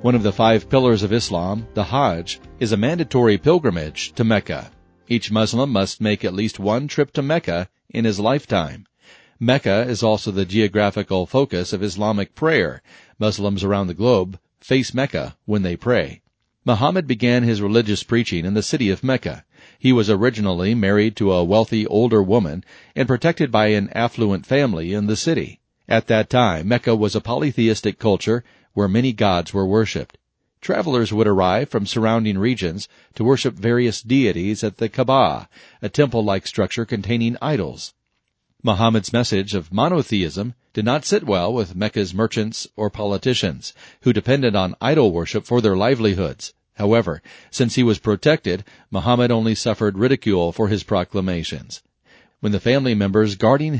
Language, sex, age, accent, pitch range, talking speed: English, male, 40-59, American, 100-120 Hz, 160 wpm